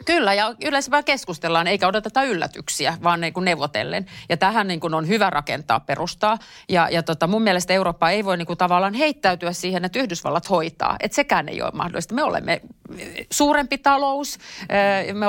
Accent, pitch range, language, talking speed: native, 165-205 Hz, Finnish, 170 wpm